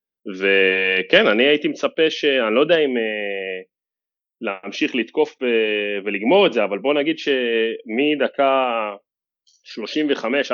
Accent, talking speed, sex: Italian, 115 wpm, male